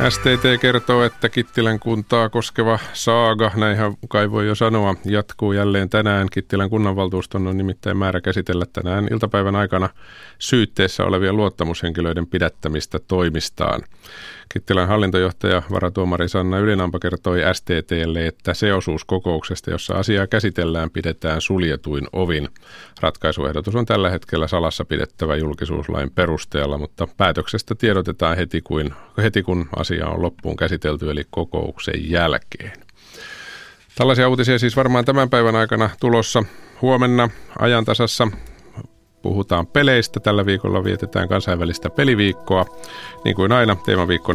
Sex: male